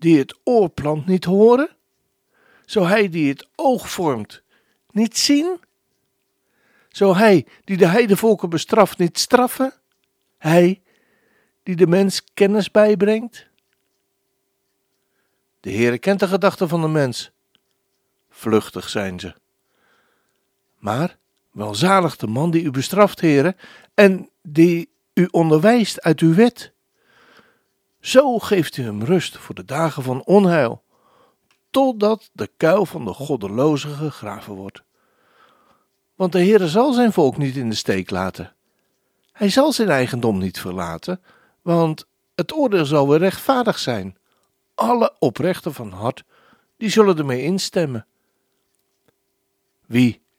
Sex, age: male, 60-79